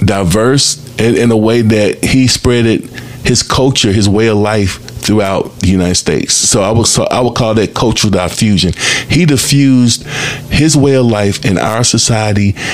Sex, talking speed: male, 170 wpm